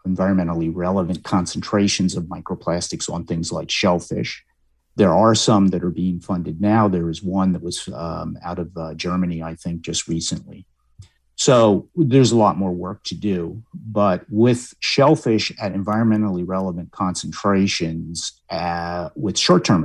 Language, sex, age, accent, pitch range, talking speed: English, male, 50-69, American, 85-100 Hz, 150 wpm